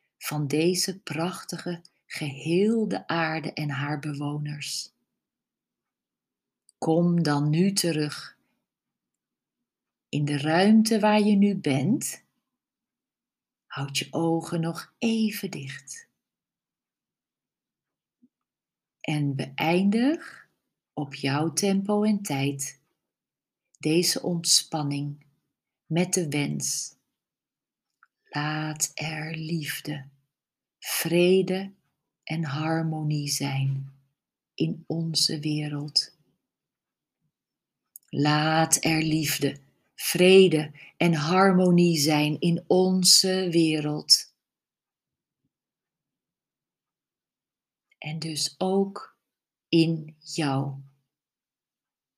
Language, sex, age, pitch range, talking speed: Dutch, female, 40-59, 145-180 Hz, 70 wpm